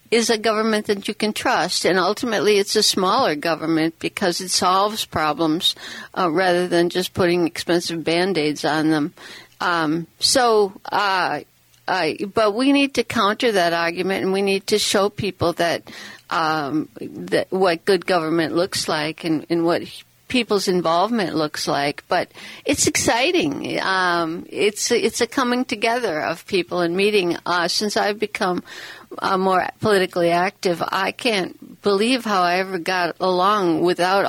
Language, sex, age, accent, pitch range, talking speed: English, female, 60-79, American, 170-210 Hz, 150 wpm